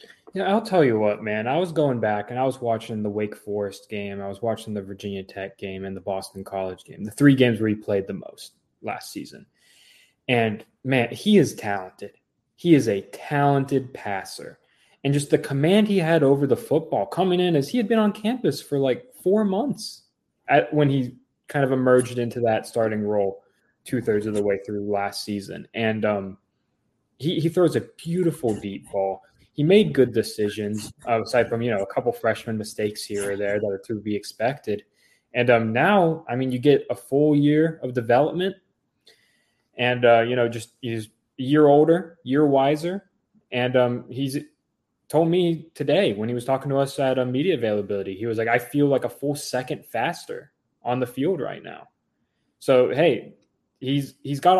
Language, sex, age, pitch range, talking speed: English, male, 20-39, 105-150 Hz, 195 wpm